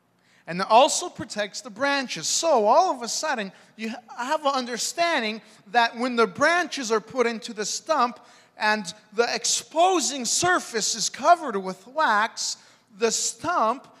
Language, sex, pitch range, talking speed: English, male, 195-275 Hz, 145 wpm